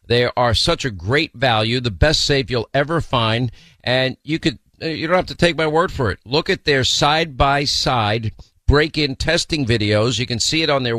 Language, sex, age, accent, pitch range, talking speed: English, male, 50-69, American, 115-140 Hz, 195 wpm